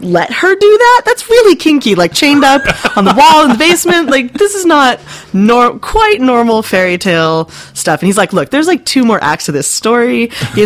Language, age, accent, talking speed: English, 30-49, American, 220 wpm